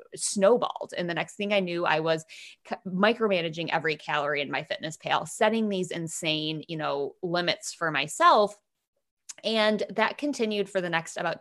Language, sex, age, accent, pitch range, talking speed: English, female, 20-39, American, 165-215 Hz, 165 wpm